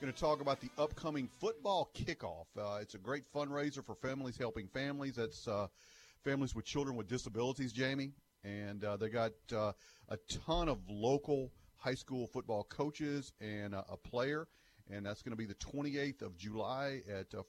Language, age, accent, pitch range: English, 40-59, American, 105-135 Hz